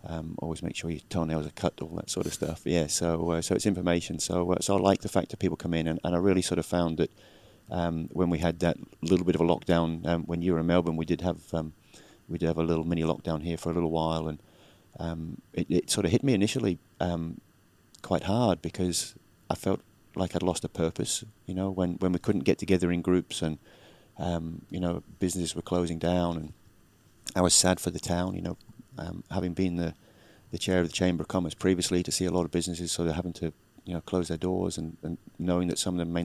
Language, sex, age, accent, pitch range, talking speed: English, male, 30-49, British, 85-95 Hz, 250 wpm